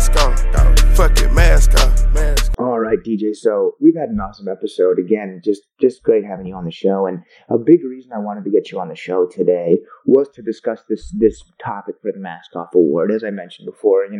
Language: English